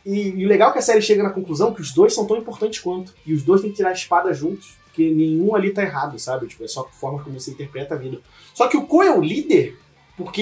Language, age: Portuguese, 20-39